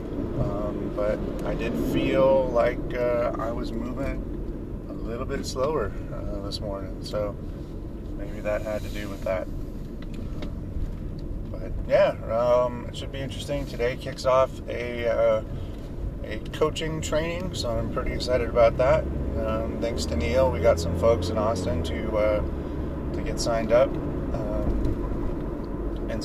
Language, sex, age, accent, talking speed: English, male, 30-49, American, 150 wpm